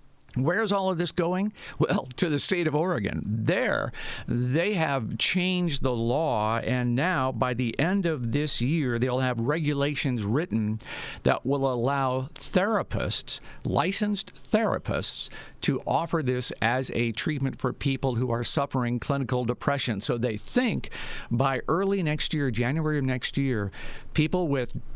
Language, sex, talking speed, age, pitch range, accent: English, male, 150 wpm, 50-69, 125-170 Hz, American